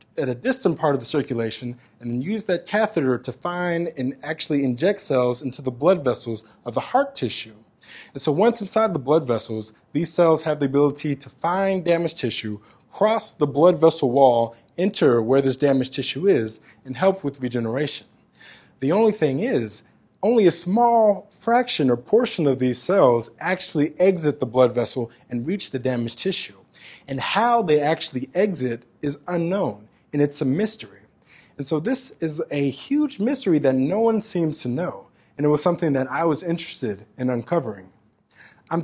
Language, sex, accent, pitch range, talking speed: English, male, American, 125-180 Hz, 180 wpm